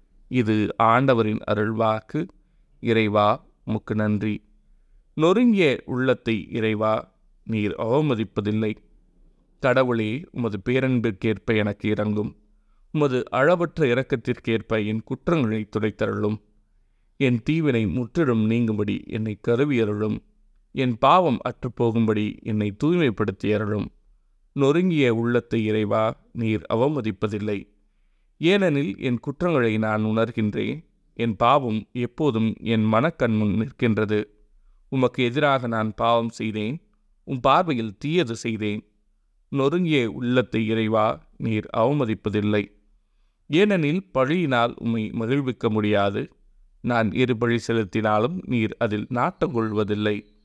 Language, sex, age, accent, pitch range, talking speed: Tamil, male, 30-49, native, 105-130 Hz, 90 wpm